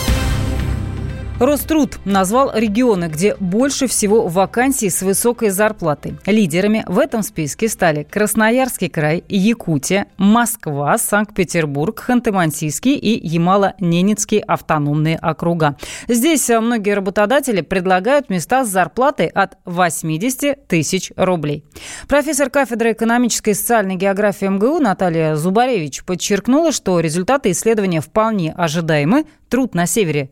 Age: 30-49